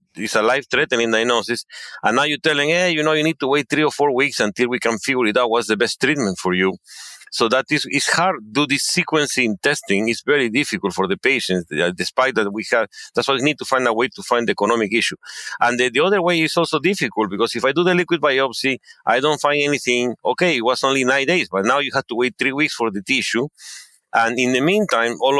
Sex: male